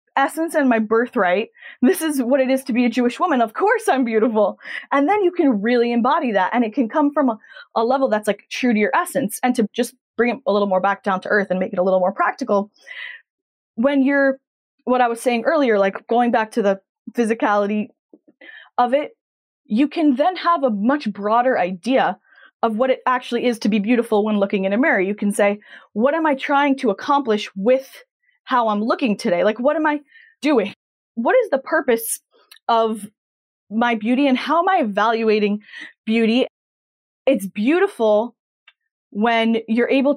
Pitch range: 210-280 Hz